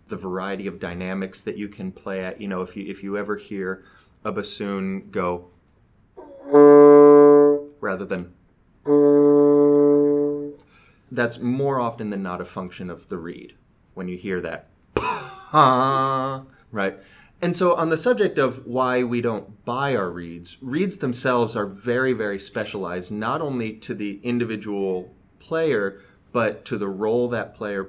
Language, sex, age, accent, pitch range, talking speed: English, male, 30-49, American, 95-140 Hz, 145 wpm